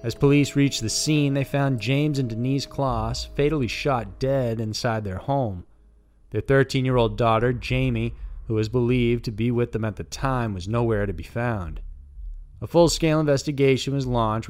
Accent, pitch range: American, 105-130 Hz